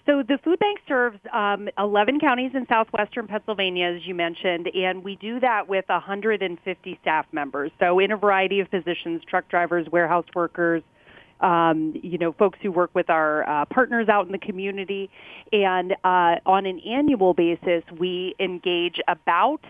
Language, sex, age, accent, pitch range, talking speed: English, female, 40-59, American, 170-210 Hz, 170 wpm